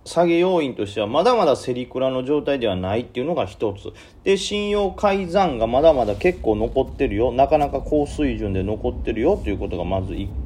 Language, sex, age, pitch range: Japanese, male, 40-59, 95-130 Hz